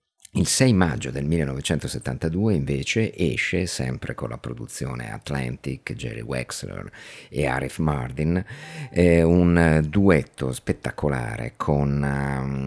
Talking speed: 100 wpm